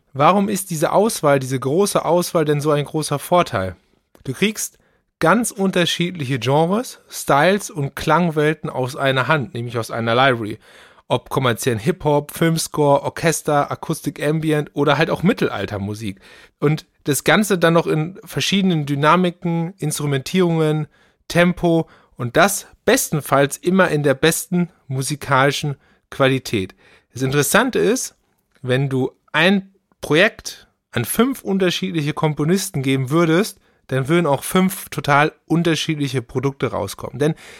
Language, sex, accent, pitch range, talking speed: German, male, German, 135-175 Hz, 125 wpm